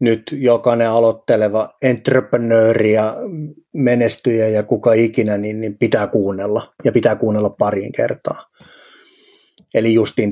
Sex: male